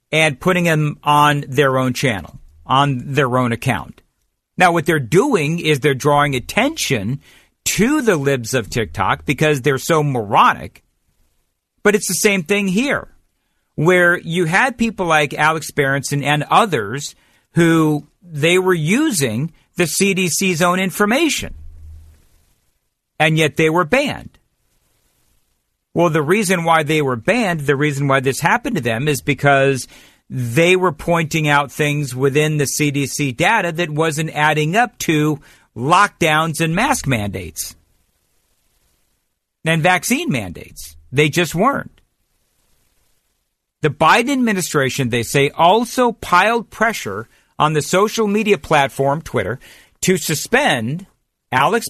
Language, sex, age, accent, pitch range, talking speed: English, male, 50-69, American, 135-180 Hz, 130 wpm